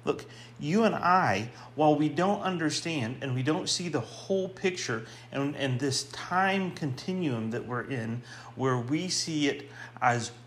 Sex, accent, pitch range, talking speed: male, American, 120-160 Hz, 160 wpm